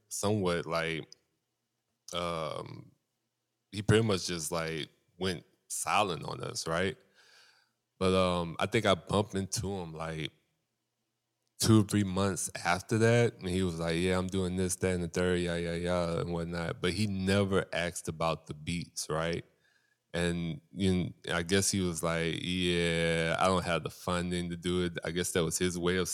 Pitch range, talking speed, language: 85-95 Hz, 175 wpm, English